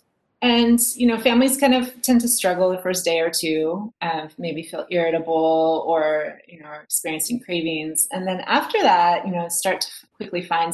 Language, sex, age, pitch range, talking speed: English, female, 30-49, 160-210 Hz, 190 wpm